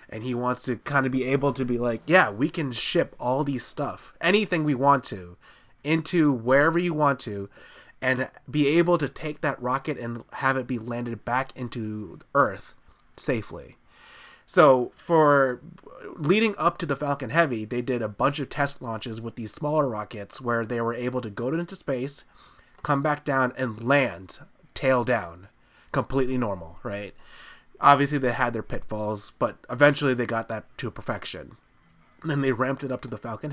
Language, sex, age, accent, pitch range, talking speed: English, male, 20-39, American, 115-145 Hz, 180 wpm